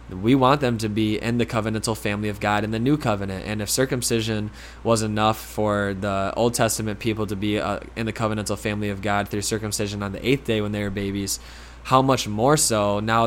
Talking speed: 215 wpm